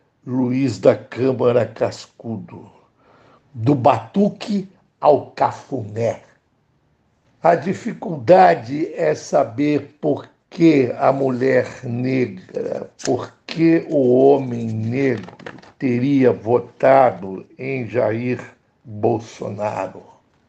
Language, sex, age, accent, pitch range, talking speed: Portuguese, male, 60-79, Brazilian, 120-155 Hz, 80 wpm